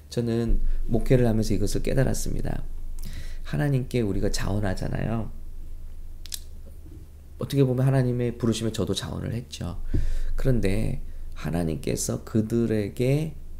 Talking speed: 80 wpm